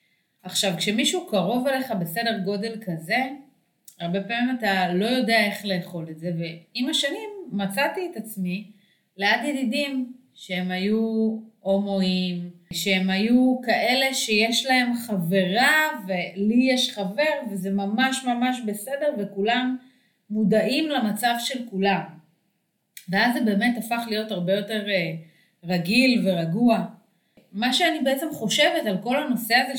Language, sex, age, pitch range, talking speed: Hebrew, female, 30-49, 180-240 Hz, 125 wpm